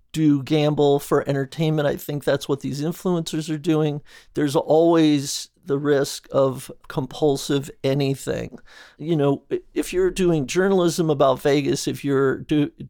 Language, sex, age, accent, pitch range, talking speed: English, male, 50-69, American, 140-170 Hz, 140 wpm